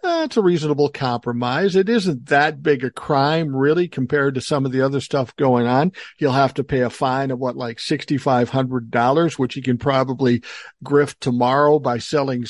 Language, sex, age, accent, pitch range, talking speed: English, male, 60-79, American, 125-165 Hz, 205 wpm